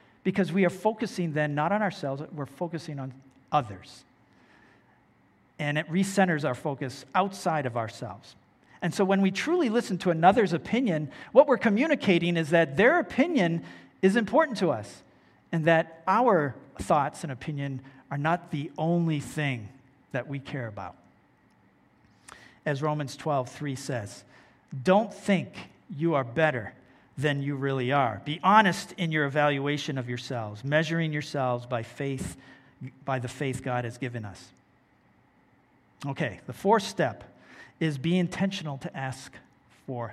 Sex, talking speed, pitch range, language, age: male, 145 wpm, 130-175 Hz, English, 50-69